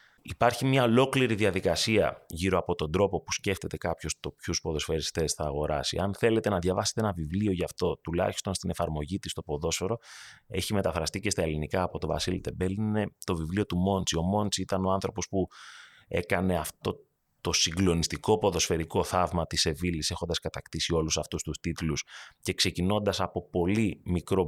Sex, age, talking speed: male, 30-49, 170 wpm